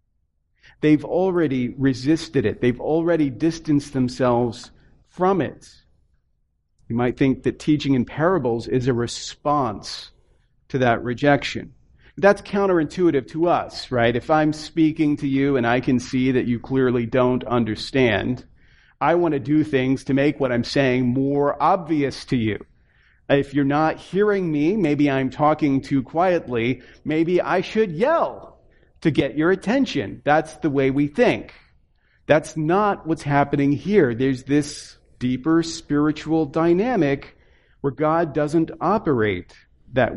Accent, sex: American, male